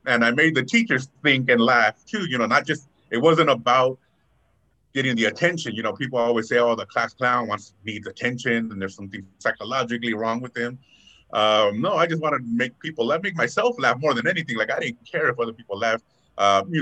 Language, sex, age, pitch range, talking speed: English, male, 30-49, 105-130 Hz, 225 wpm